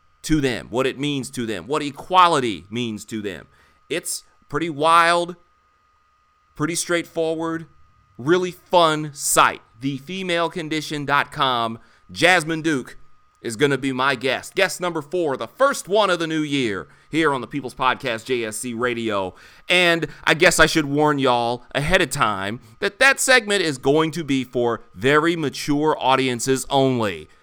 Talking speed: 150 wpm